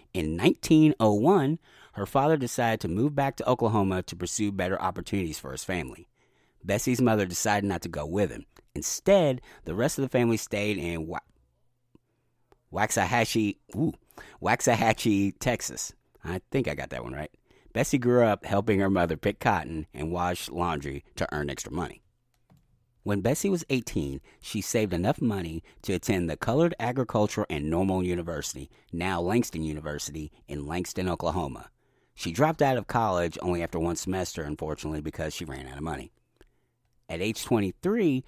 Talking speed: 155 wpm